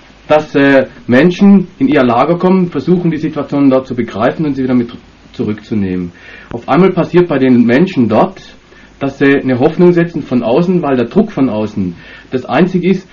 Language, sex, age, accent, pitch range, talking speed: German, male, 40-59, German, 120-155 Hz, 185 wpm